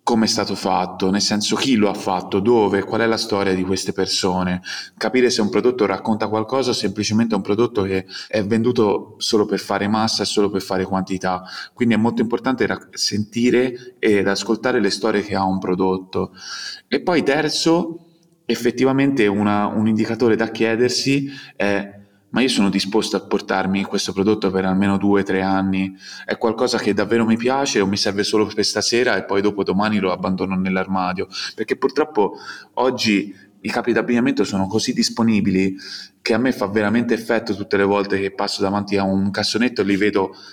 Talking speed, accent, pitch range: 180 wpm, native, 95-115 Hz